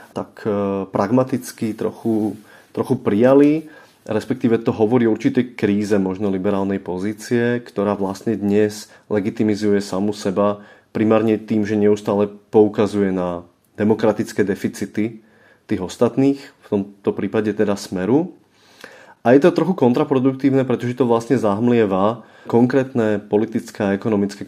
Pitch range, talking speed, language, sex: 100-135 Hz, 120 wpm, Czech, male